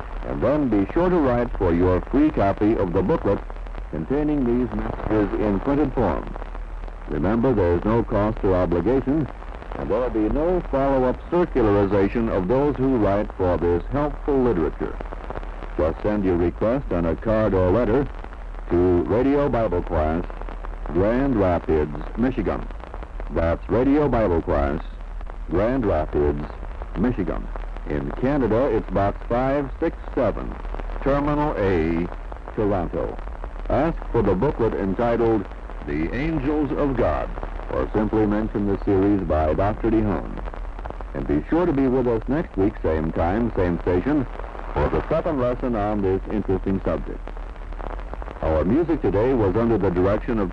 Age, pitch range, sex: 60-79, 85-125 Hz, male